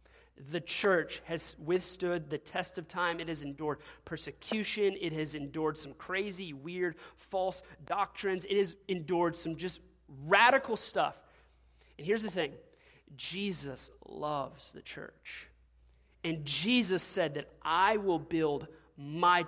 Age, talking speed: 30-49, 130 wpm